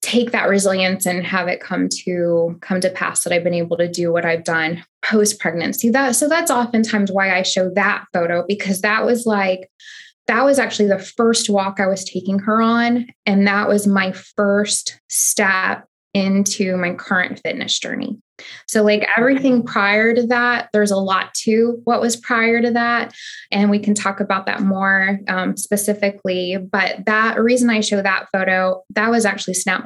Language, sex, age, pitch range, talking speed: English, female, 10-29, 185-220 Hz, 185 wpm